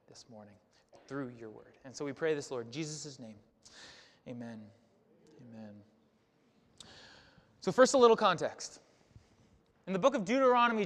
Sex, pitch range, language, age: male, 150-215 Hz, English, 20-39